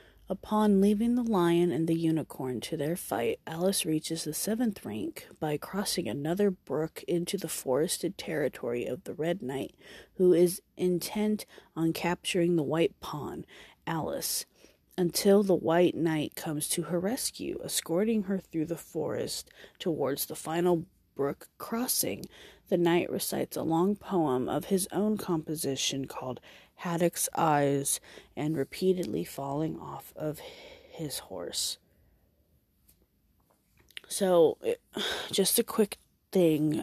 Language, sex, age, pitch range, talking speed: English, female, 30-49, 165-215 Hz, 130 wpm